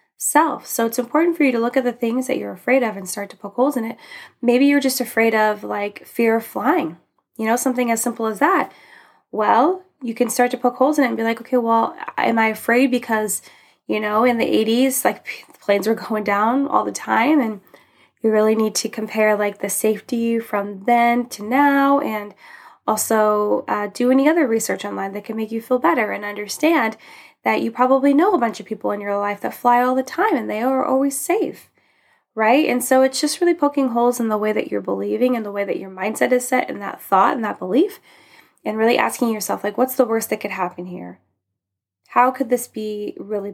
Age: 10-29